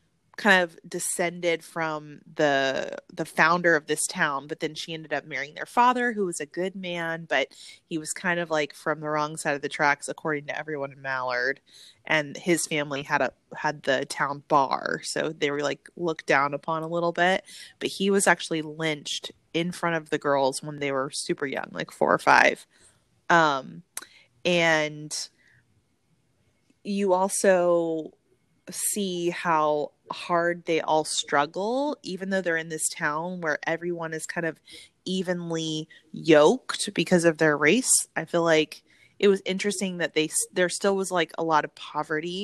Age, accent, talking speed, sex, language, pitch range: 20-39, American, 175 wpm, female, English, 150-180 Hz